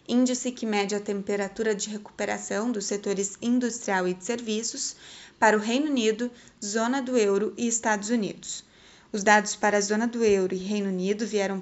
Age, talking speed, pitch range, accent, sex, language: 20-39, 175 wpm, 205-245 Hz, Brazilian, female, Portuguese